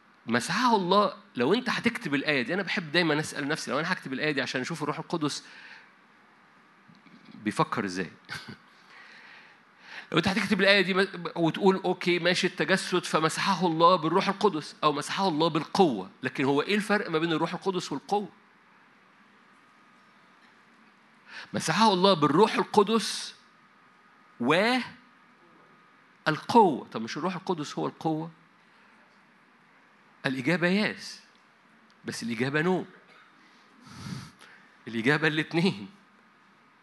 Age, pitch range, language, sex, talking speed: 50-69, 150-205 Hz, Arabic, male, 110 wpm